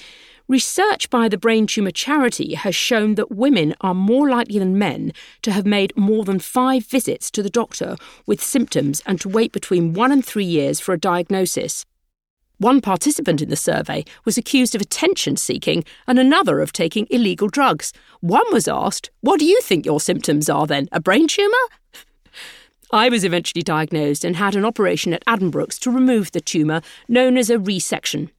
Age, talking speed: 50-69, 180 wpm